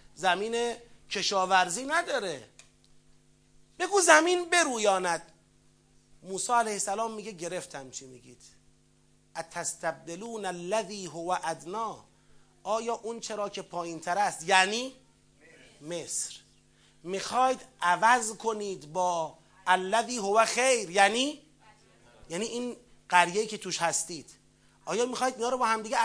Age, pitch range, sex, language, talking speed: 30-49, 185-255 Hz, male, Persian, 100 wpm